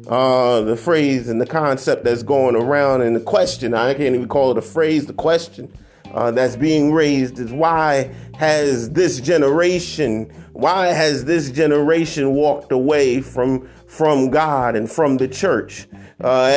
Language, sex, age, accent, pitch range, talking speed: English, male, 30-49, American, 130-175 Hz, 160 wpm